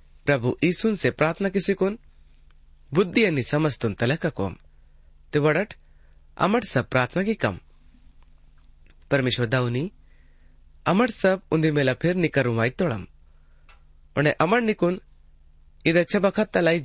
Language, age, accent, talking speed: Hindi, 30-49, native, 90 wpm